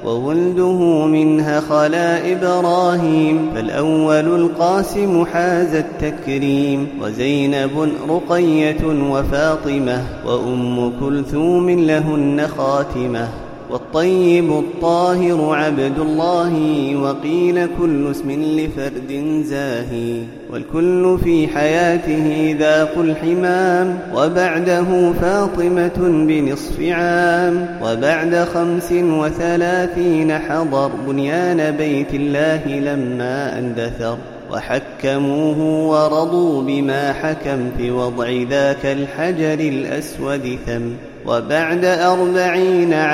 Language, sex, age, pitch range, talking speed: Arabic, male, 30-49, 140-175 Hz, 75 wpm